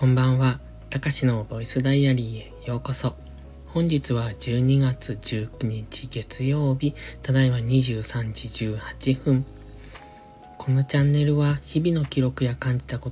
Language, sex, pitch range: Japanese, male, 115-140 Hz